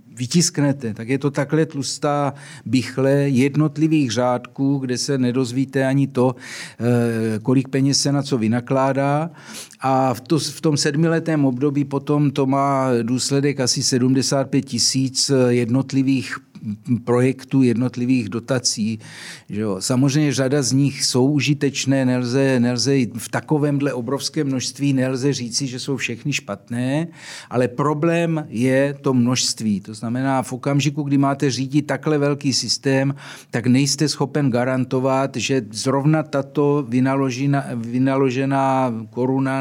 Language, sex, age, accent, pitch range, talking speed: Czech, male, 50-69, native, 125-145 Hz, 125 wpm